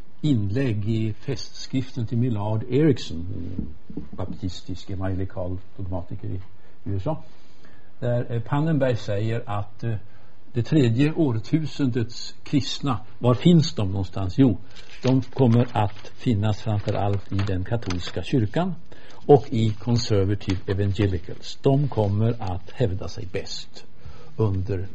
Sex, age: male, 60-79